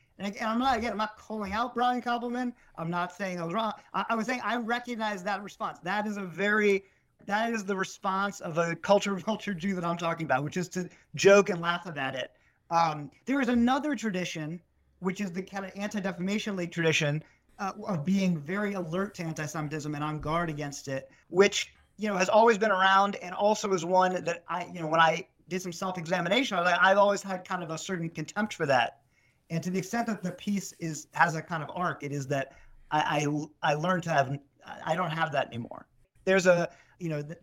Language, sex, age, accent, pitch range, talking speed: English, male, 40-59, American, 160-200 Hz, 225 wpm